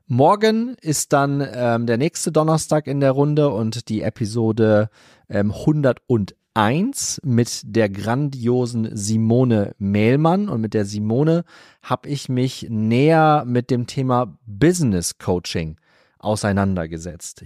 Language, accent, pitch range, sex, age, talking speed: German, German, 110-145 Hz, male, 30-49, 115 wpm